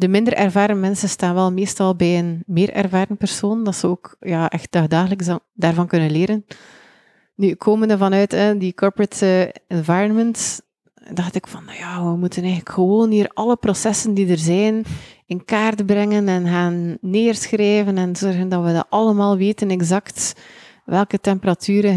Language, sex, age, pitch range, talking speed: English, female, 30-49, 170-205 Hz, 155 wpm